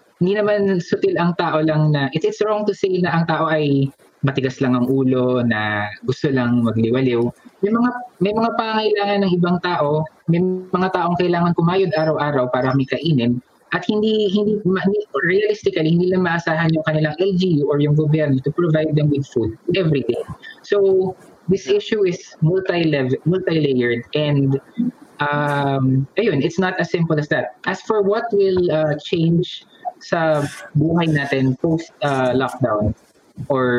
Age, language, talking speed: 20-39, English, 165 wpm